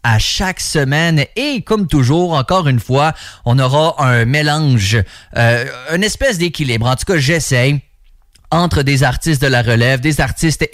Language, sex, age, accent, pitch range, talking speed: English, male, 30-49, Canadian, 125-160 Hz, 160 wpm